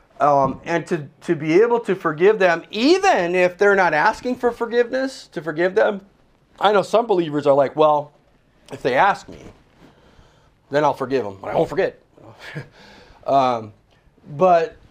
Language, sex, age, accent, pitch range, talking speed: English, male, 40-59, American, 145-230 Hz, 160 wpm